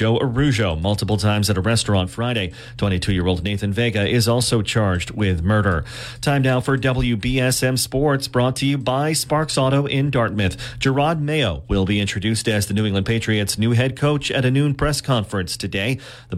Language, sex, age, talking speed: English, male, 40-59, 180 wpm